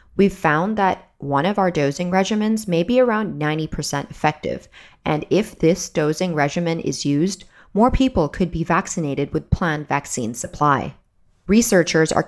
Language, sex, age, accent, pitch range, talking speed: English, female, 30-49, American, 150-195 Hz, 150 wpm